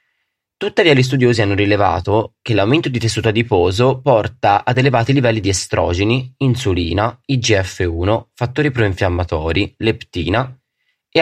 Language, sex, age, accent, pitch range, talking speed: Italian, male, 20-39, native, 95-130 Hz, 120 wpm